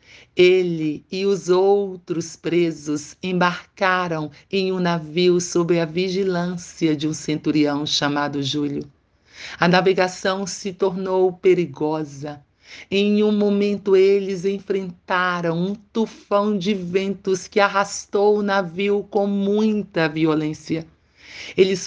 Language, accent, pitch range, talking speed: Portuguese, Brazilian, 165-205 Hz, 105 wpm